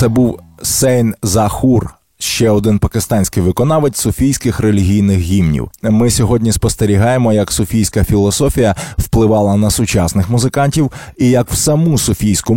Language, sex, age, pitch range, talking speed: Ukrainian, male, 20-39, 105-130 Hz, 125 wpm